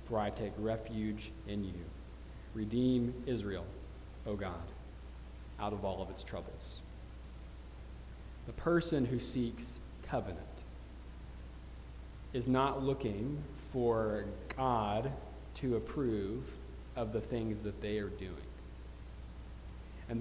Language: English